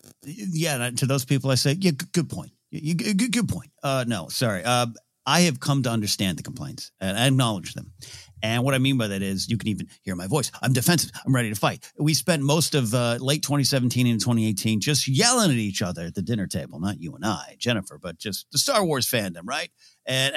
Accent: American